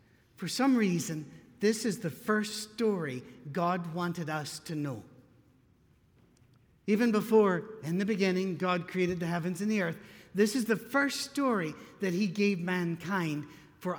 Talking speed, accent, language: 150 wpm, American, English